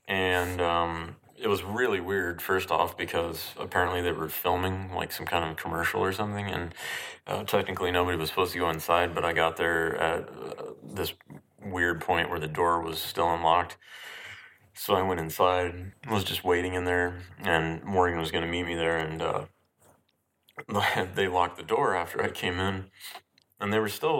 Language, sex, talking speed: English, male, 185 wpm